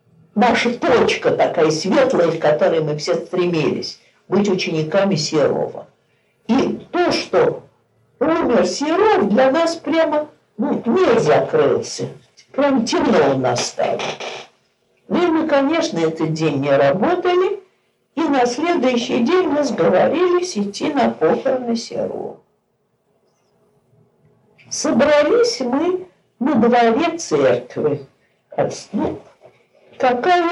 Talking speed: 105 wpm